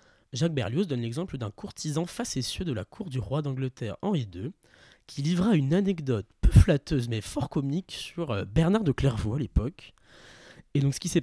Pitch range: 120-160 Hz